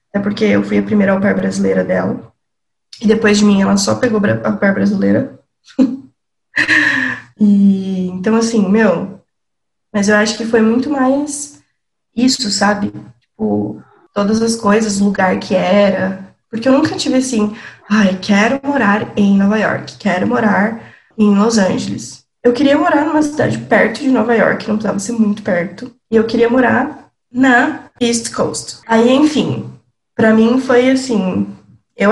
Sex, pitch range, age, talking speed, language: female, 200-245 Hz, 20-39, 160 wpm, Portuguese